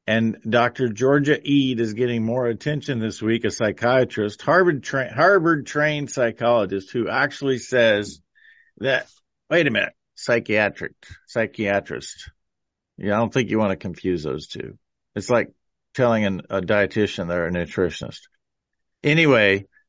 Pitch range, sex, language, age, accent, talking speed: 100-125 Hz, male, English, 50-69, American, 140 wpm